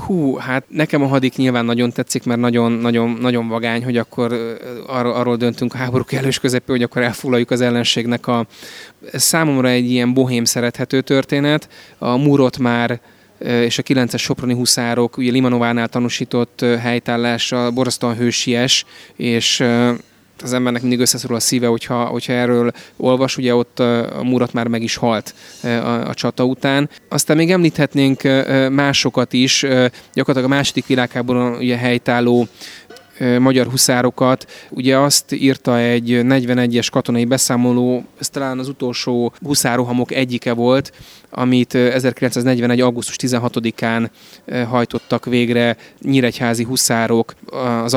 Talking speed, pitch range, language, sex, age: 135 wpm, 120-130 Hz, Hungarian, male, 20-39